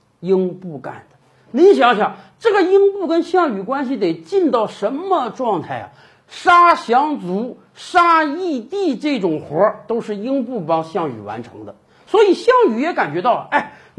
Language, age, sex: Chinese, 50-69, male